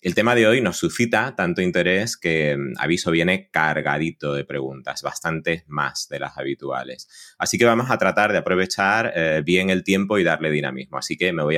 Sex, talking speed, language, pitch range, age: male, 190 wpm, Spanish, 75-105 Hz, 30-49